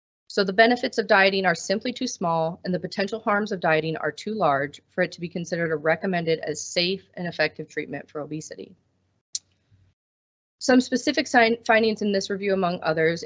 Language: English